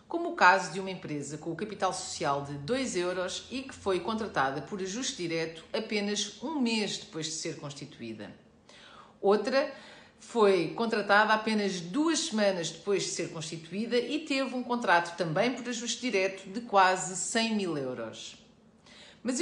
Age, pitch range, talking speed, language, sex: 40-59, 165-225 Hz, 160 wpm, Portuguese, female